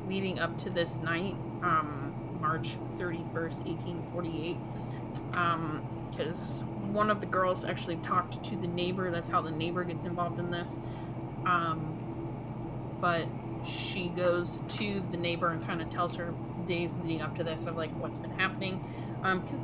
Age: 20-39